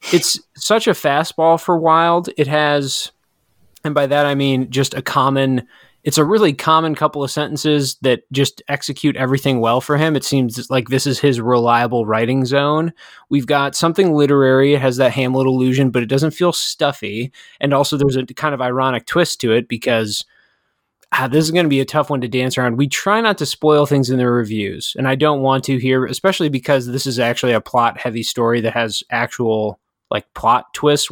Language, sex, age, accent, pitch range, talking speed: English, male, 20-39, American, 130-155 Hz, 205 wpm